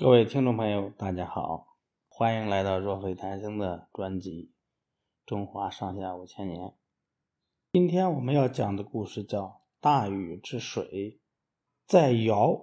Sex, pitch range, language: male, 100-140 Hz, Chinese